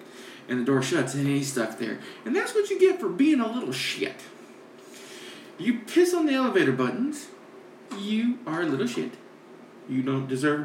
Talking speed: 180 wpm